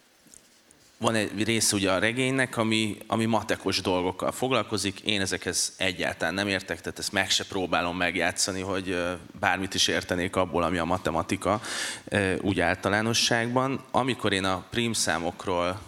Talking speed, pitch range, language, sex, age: 140 wpm, 90-110 Hz, Hungarian, male, 30-49